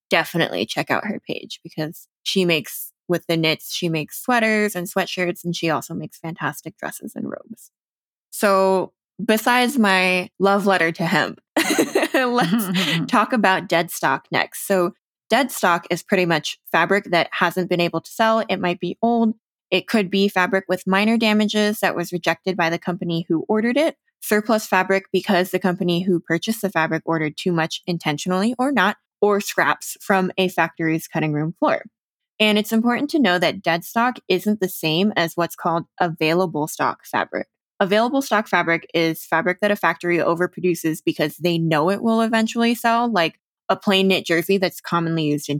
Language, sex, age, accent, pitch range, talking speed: English, female, 20-39, American, 170-210 Hz, 175 wpm